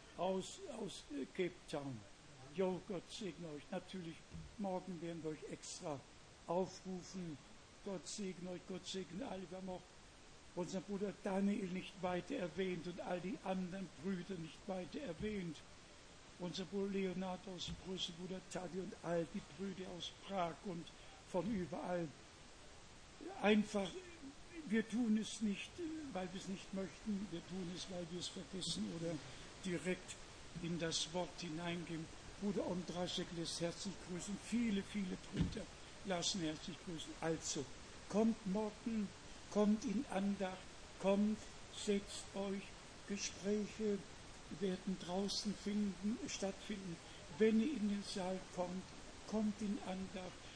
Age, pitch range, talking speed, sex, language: 60-79, 175-205 Hz, 130 wpm, male, Hungarian